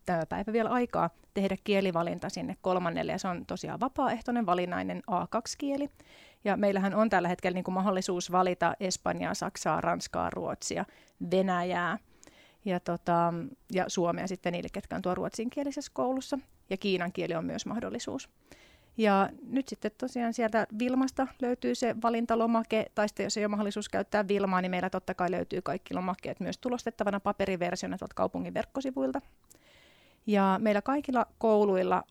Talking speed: 150 wpm